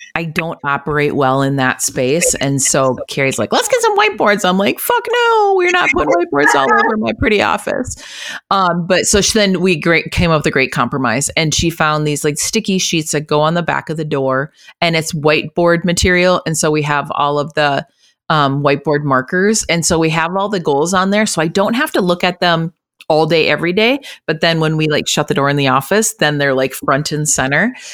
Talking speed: 230 wpm